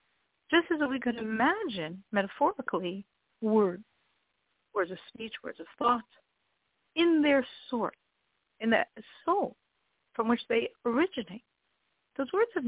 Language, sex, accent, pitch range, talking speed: English, female, American, 210-280 Hz, 125 wpm